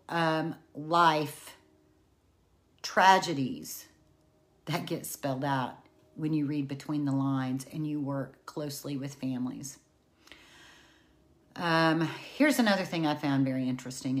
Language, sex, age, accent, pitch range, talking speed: English, female, 40-59, American, 140-165 Hz, 115 wpm